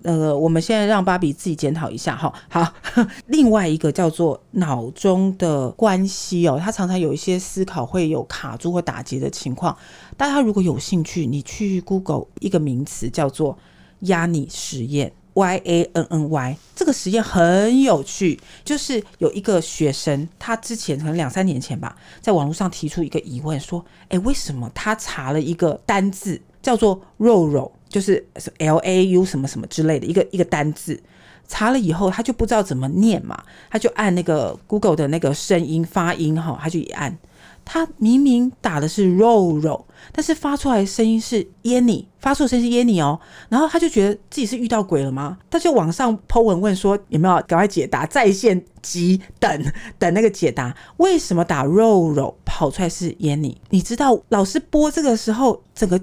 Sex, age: female, 40-59